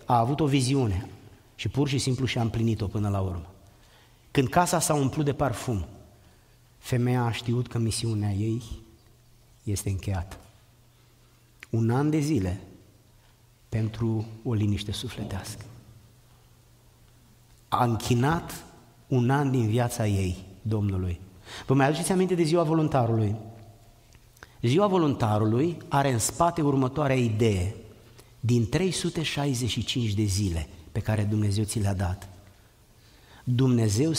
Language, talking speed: Romanian, 120 wpm